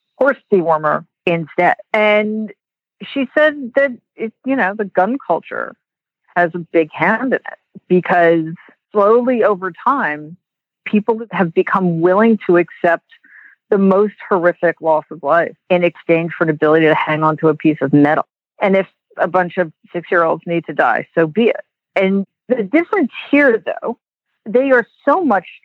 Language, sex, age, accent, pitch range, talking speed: English, female, 50-69, American, 170-235 Hz, 160 wpm